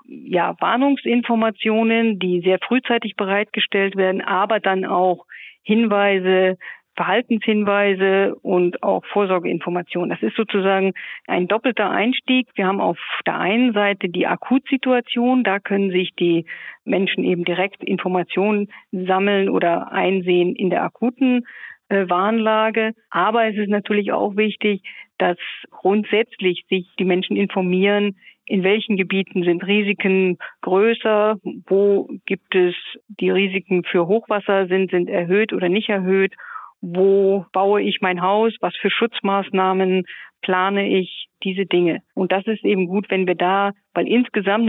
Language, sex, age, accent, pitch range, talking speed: German, female, 50-69, German, 185-215 Hz, 130 wpm